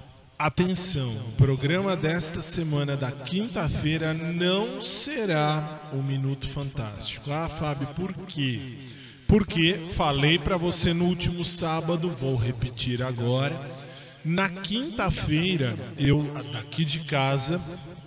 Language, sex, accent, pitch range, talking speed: Portuguese, male, Brazilian, 130-165 Hz, 105 wpm